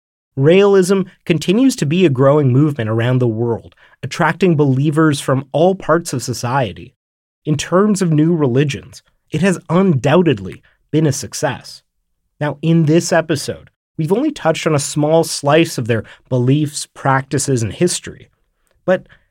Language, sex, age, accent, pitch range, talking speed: English, male, 30-49, American, 130-170 Hz, 145 wpm